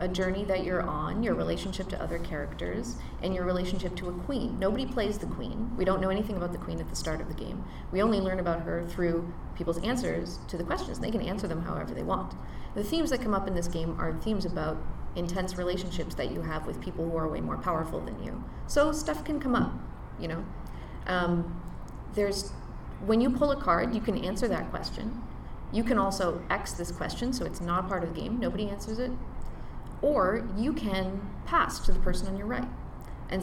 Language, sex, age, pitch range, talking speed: English, female, 30-49, 175-220 Hz, 220 wpm